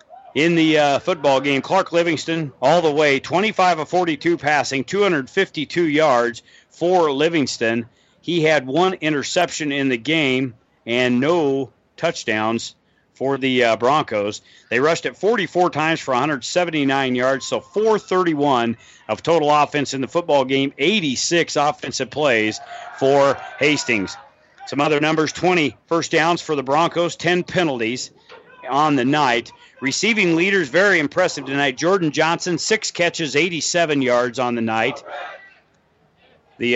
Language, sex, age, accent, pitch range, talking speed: English, male, 40-59, American, 135-170 Hz, 135 wpm